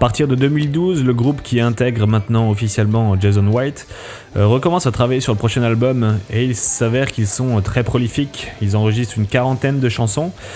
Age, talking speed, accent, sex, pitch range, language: 20-39, 180 wpm, French, male, 100-125 Hz, French